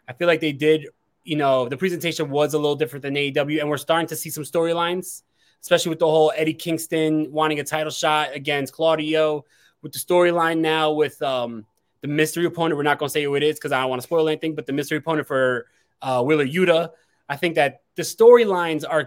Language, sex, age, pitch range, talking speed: English, male, 20-39, 145-175 Hz, 225 wpm